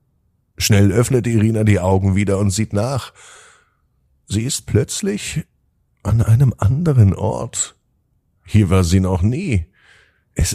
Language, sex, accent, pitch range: German, male, German, 85-110 Hz